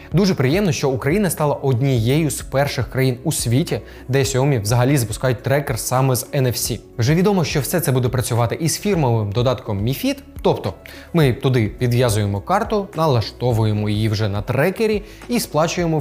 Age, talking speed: 20-39, 160 wpm